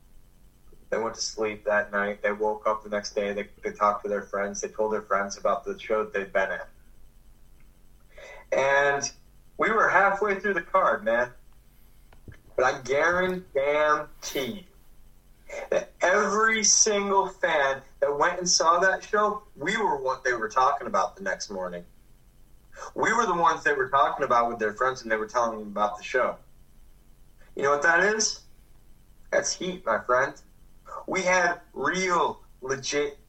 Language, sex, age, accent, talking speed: English, male, 30-49, American, 165 wpm